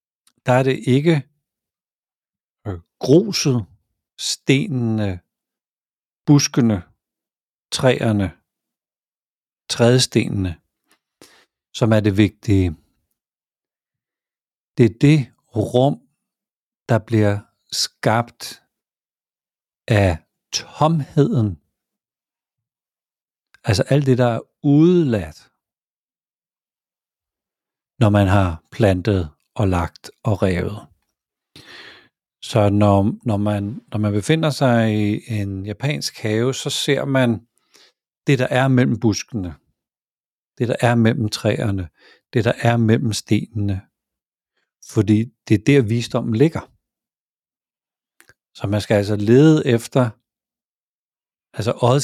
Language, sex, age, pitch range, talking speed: Danish, male, 60-79, 100-130 Hz, 90 wpm